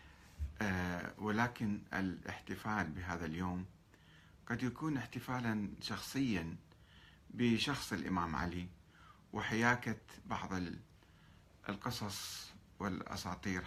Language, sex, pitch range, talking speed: Arabic, male, 85-110 Hz, 65 wpm